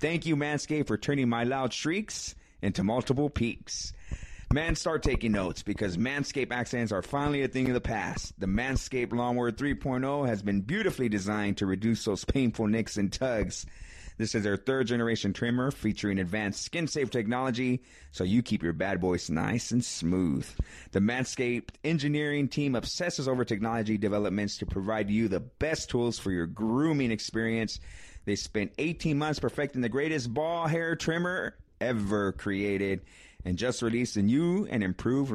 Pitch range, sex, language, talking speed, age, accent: 100-130 Hz, male, English, 160 wpm, 30-49, American